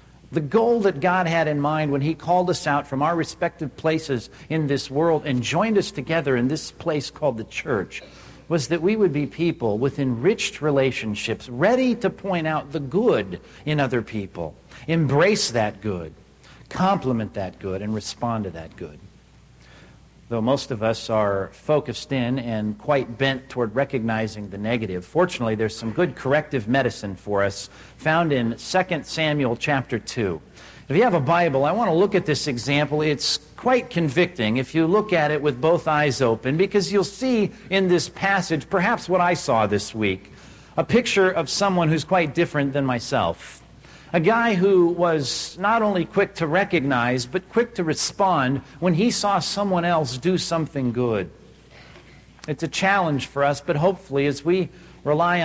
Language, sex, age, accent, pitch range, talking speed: English, male, 50-69, American, 120-170 Hz, 175 wpm